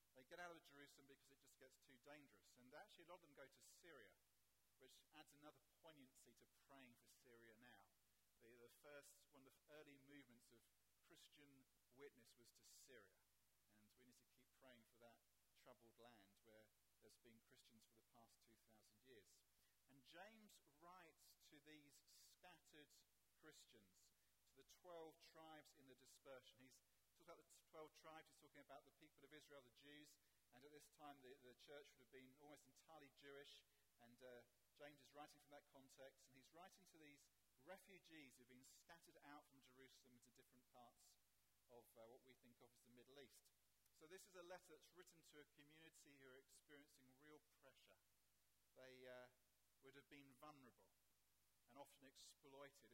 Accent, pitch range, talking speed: British, 115-145 Hz, 180 wpm